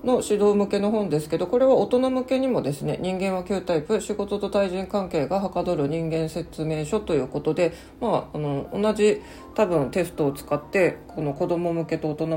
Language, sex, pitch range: Japanese, female, 160-205 Hz